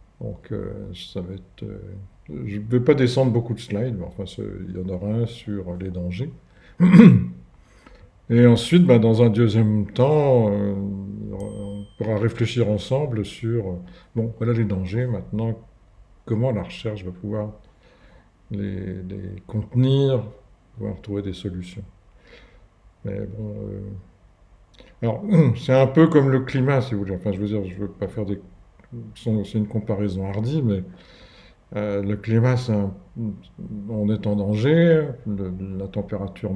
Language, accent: French, French